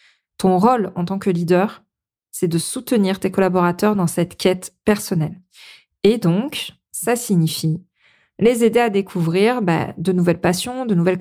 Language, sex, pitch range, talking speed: French, female, 180-230 Hz, 155 wpm